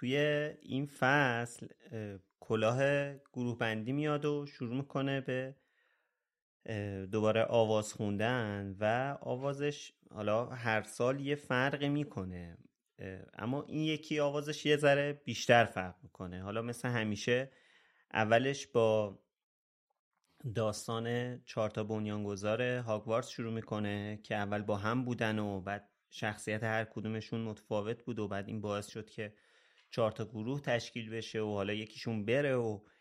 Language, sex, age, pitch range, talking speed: Persian, male, 30-49, 105-140 Hz, 125 wpm